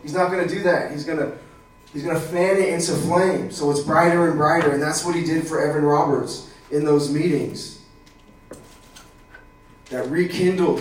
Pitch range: 145-165 Hz